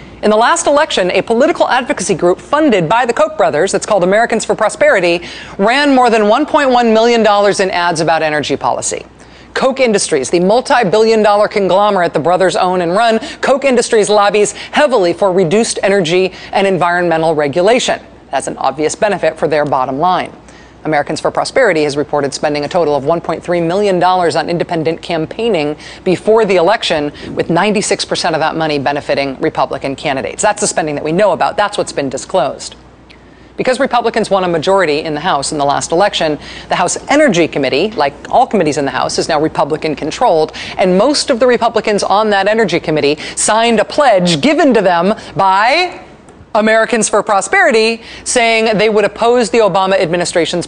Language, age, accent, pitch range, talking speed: English, 40-59, American, 160-220 Hz, 170 wpm